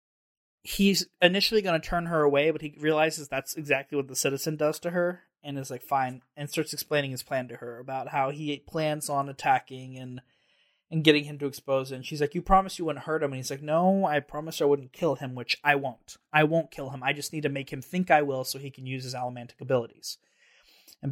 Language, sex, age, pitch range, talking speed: English, male, 20-39, 130-155 Hz, 240 wpm